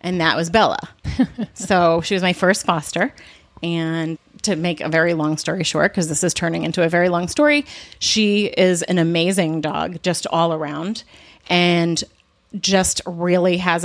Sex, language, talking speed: female, English, 170 wpm